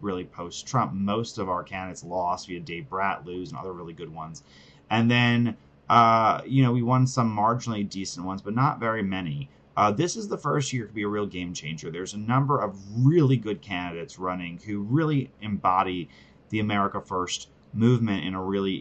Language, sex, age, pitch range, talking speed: English, male, 30-49, 85-110 Hz, 195 wpm